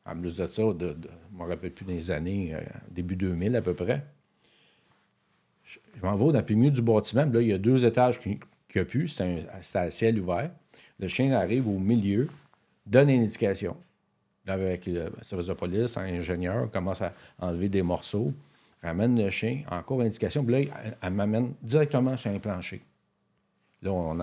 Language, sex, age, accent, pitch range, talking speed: French, male, 50-69, Canadian, 90-120 Hz, 185 wpm